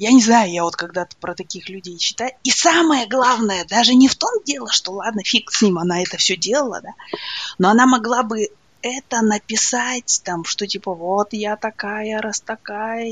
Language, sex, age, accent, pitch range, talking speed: Russian, female, 20-39, native, 185-240 Hz, 190 wpm